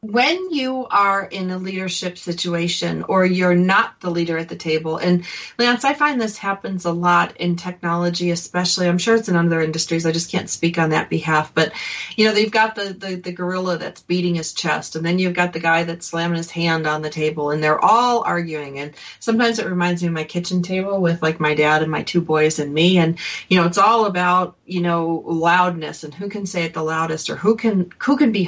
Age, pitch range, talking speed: 40-59, 165-200 Hz, 230 wpm